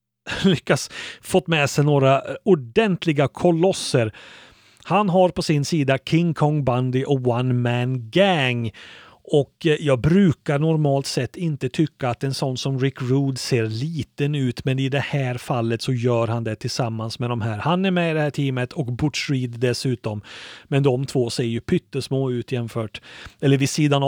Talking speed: 175 wpm